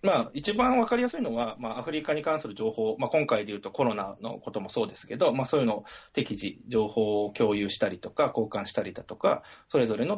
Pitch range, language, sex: 105-155 Hz, Japanese, male